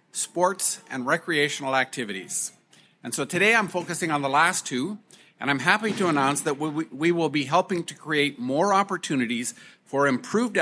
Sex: male